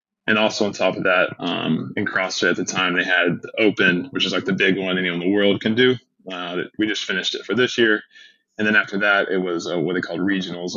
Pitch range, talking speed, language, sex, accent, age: 90-105 Hz, 260 wpm, English, male, American, 20-39